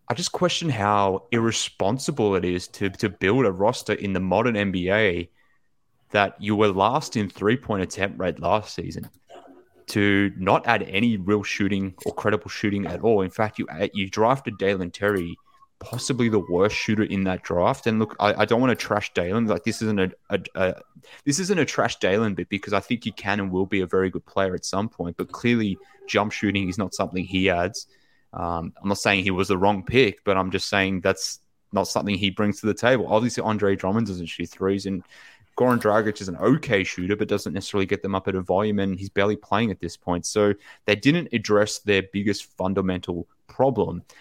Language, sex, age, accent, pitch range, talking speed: English, male, 20-39, Australian, 95-110 Hz, 210 wpm